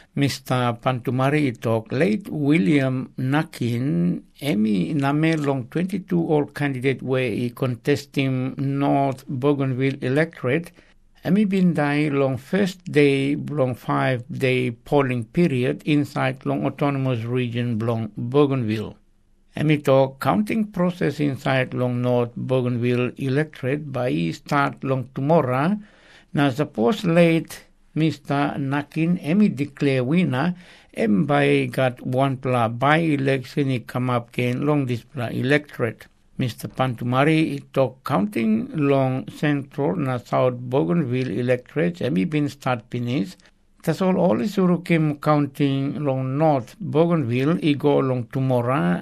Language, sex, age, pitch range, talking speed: English, male, 60-79, 130-155 Hz, 115 wpm